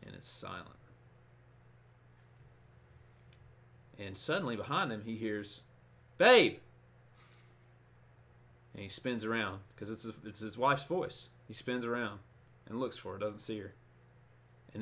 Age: 30-49